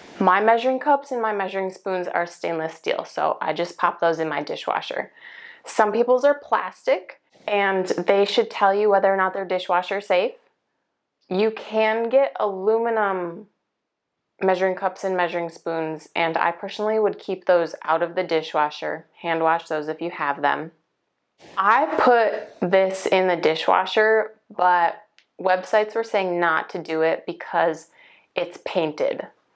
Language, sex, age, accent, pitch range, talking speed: English, female, 20-39, American, 175-210 Hz, 155 wpm